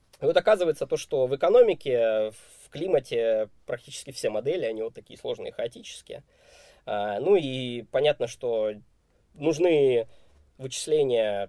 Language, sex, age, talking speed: Russian, male, 20-39, 115 wpm